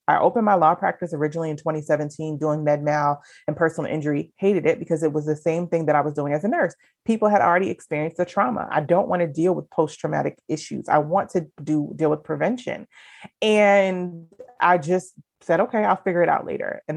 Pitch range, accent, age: 155-195 Hz, American, 30-49